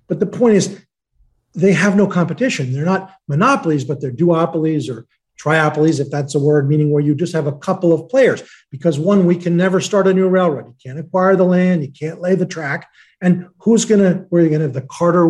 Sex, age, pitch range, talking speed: male, 40-59, 160-200 Hz, 235 wpm